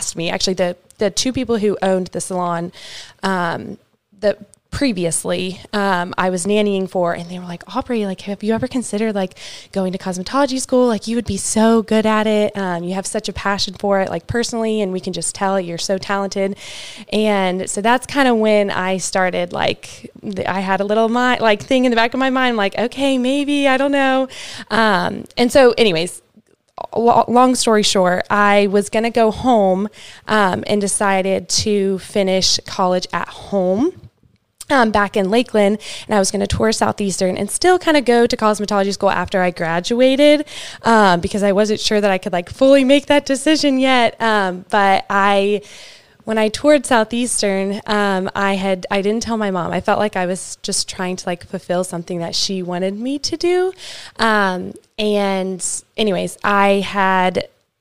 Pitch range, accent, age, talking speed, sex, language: 190-230 Hz, American, 20-39, 190 wpm, female, English